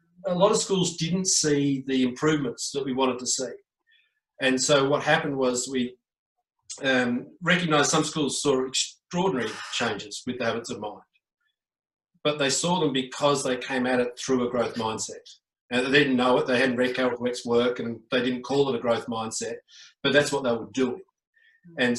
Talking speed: 190 wpm